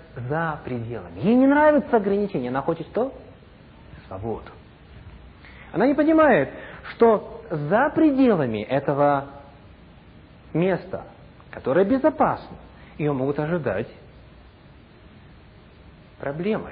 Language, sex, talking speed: English, male, 85 wpm